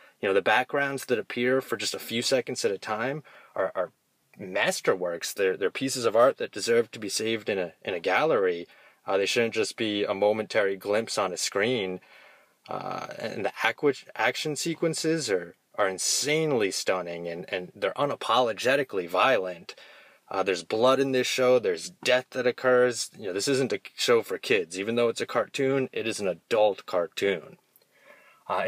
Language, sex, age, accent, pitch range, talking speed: English, male, 20-39, American, 105-135 Hz, 180 wpm